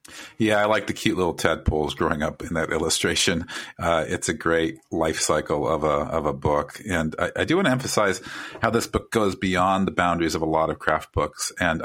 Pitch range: 75-100 Hz